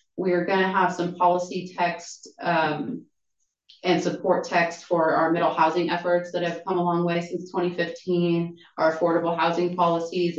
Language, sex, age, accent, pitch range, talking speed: English, female, 30-49, American, 165-185 Hz, 170 wpm